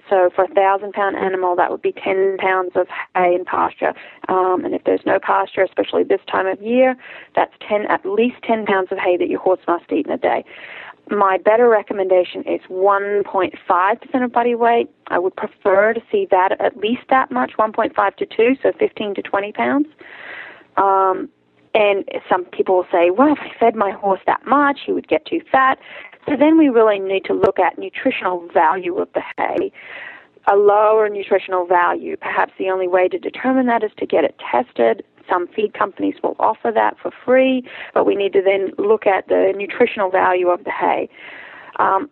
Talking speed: 195 wpm